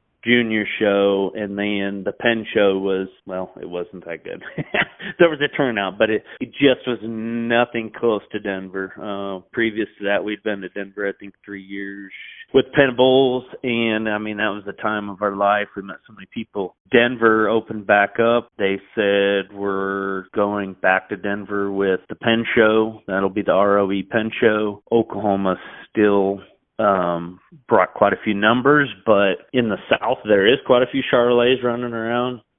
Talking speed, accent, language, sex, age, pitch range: 180 wpm, American, English, male, 40-59, 100-115 Hz